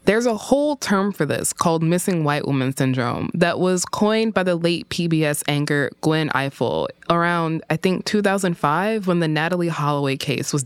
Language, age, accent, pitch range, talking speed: English, 20-39, American, 150-205 Hz, 175 wpm